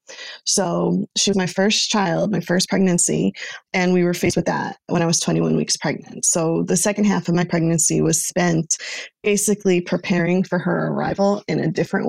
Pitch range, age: 170-195 Hz, 20-39